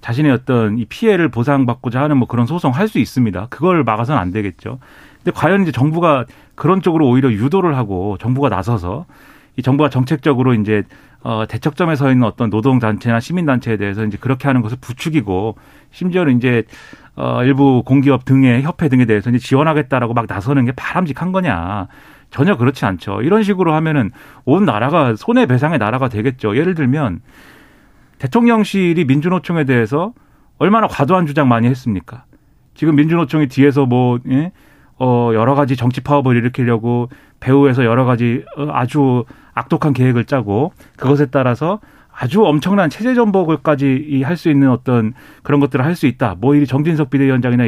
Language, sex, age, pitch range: Korean, male, 40-59, 120-150 Hz